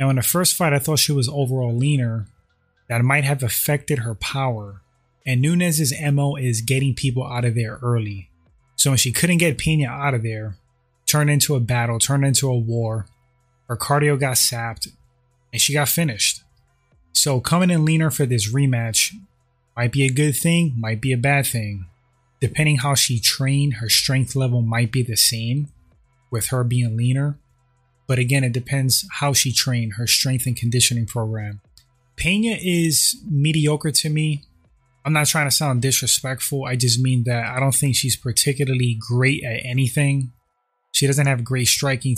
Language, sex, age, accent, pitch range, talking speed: English, male, 20-39, American, 120-140 Hz, 175 wpm